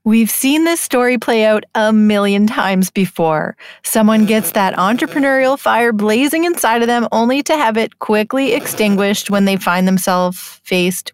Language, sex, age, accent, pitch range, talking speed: English, female, 30-49, American, 200-240 Hz, 160 wpm